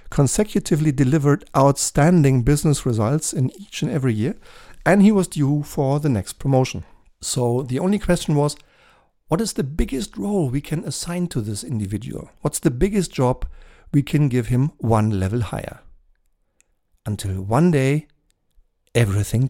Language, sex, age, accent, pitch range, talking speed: German, male, 50-69, German, 115-155 Hz, 150 wpm